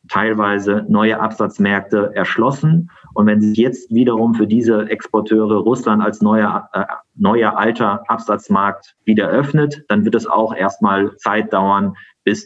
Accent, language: German, German